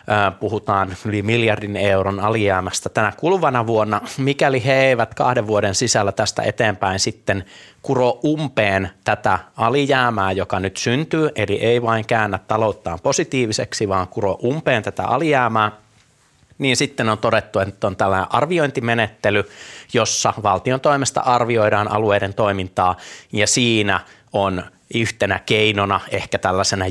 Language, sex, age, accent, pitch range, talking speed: Finnish, male, 30-49, native, 100-125 Hz, 125 wpm